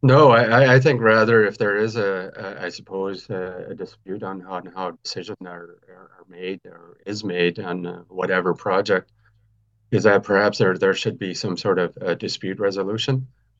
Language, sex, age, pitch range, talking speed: English, male, 30-49, 95-115 Hz, 180 wpm